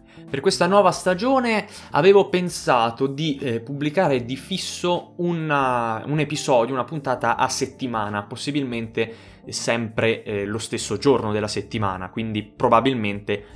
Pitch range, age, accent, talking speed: 110-135 Hz, 20-39, native, 120 wpm